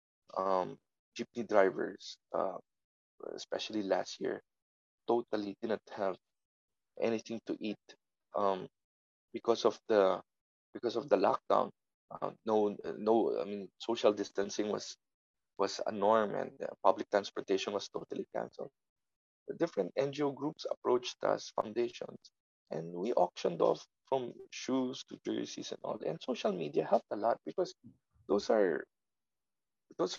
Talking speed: 135 wpm